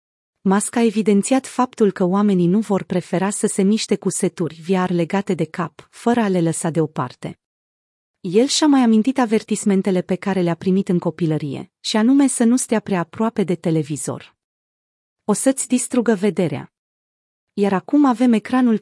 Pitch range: 175-220 Hz